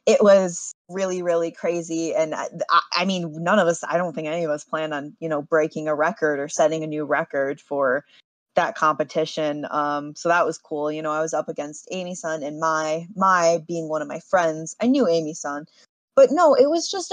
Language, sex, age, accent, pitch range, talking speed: English, female, 20-39, American, 155-215 Hz, 220 wpm